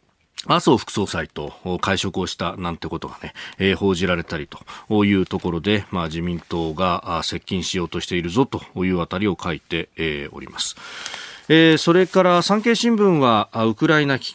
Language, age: Japanese, 40-59